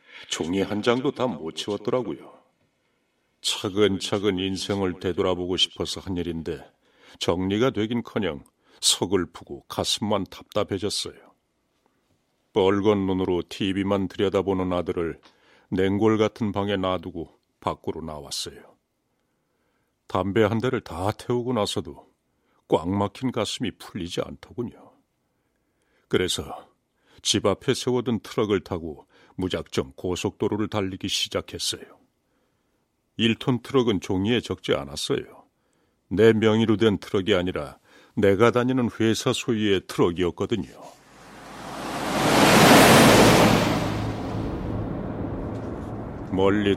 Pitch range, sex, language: 90-110 Hz, male, Korean